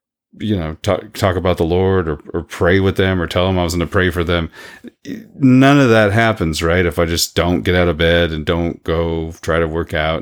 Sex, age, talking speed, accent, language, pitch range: male, 30-49, 245 wpm, American, English, 80-100 Hz